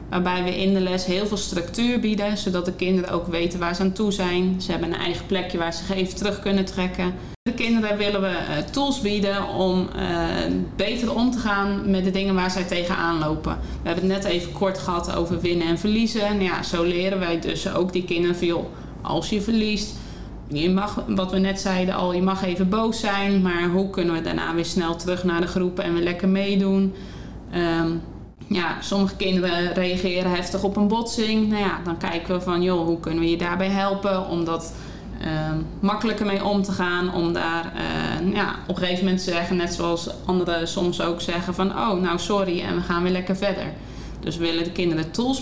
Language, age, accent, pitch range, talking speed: Dutch, 20-39, Dutch, 175-195 Hz, 210 wpm